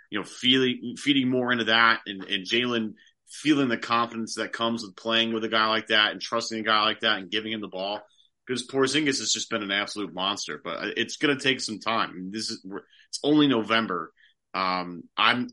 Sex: male